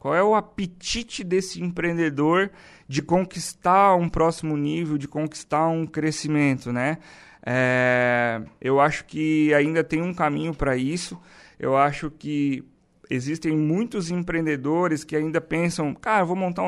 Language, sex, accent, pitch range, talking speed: Portuguese, male, Brazilian, 155-185 Hz, 135 wpm